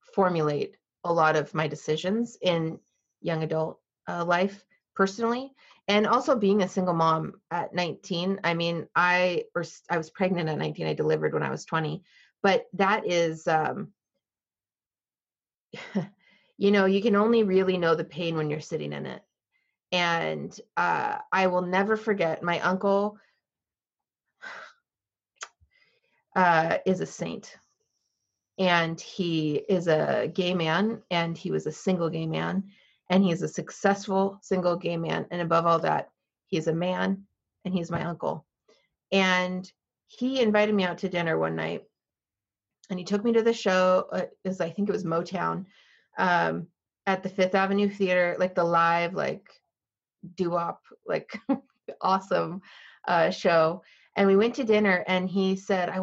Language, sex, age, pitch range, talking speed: English, female, 30-49, 170-200 Hz, 155 wpm